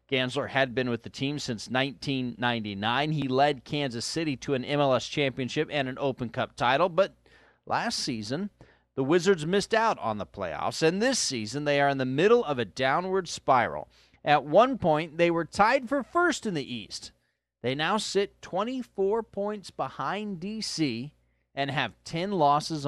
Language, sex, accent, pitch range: English, male, American, 125-180 Hz